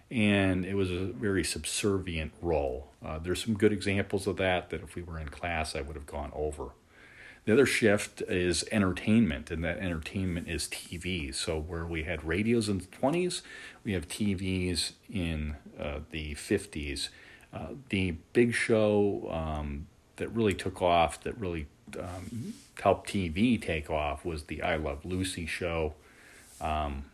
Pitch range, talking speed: 80-105 Hz, 160 wpm